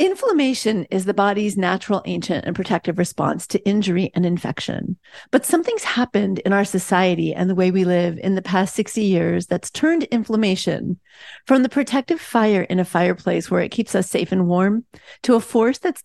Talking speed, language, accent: 185 wpm, English, American